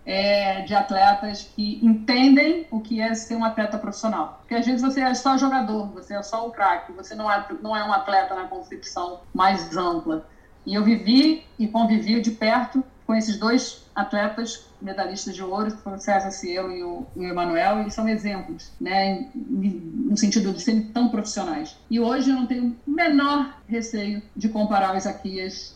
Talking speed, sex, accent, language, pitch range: 175 wpm, female, Brazilian, Portuguese, 190-230 Hz